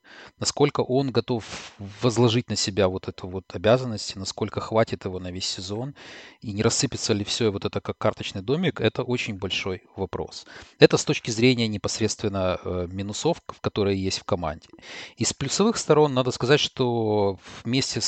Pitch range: 100-125 Hz